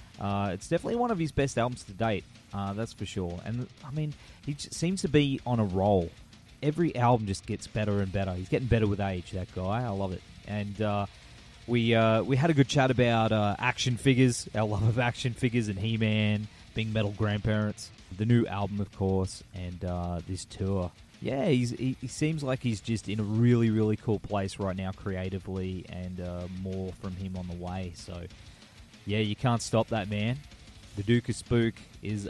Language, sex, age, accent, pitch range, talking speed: English, male, 20-39, Australian, 95-120 Hz, 205 wpm